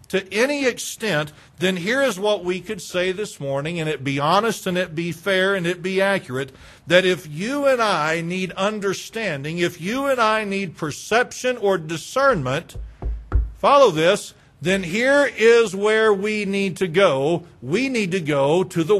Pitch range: 170-225 Hz